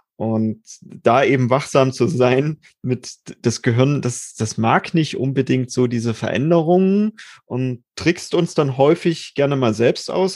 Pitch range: 120-140 Hz